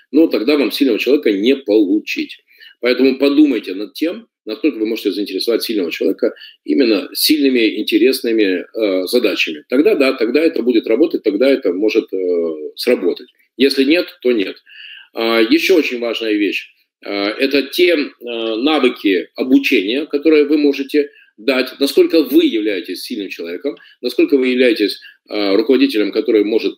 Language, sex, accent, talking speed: Russian, male, native, 145 wpm